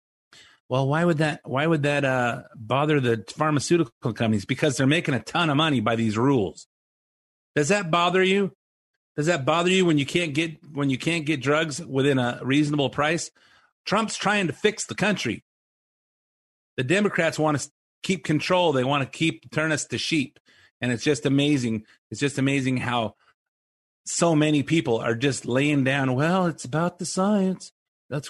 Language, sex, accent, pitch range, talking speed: English, male, American, 130-175 Hz, 180 wpm